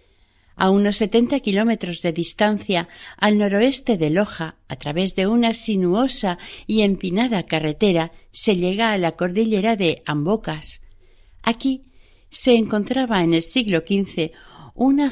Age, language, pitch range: 60-79, Spanish, 165-215 Hz